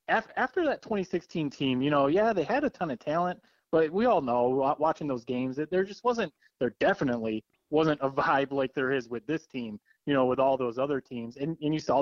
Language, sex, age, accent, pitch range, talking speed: English, male, 20-39, American, 125-150 Hz, 235 wpm